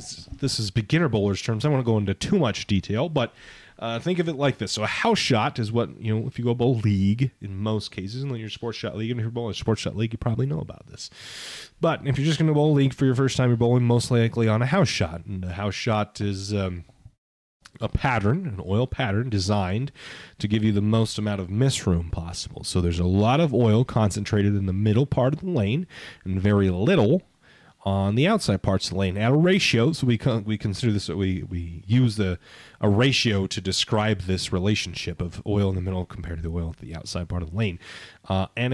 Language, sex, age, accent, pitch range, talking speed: English, male, 30-49, American, 100-135 Hz, 245 wpm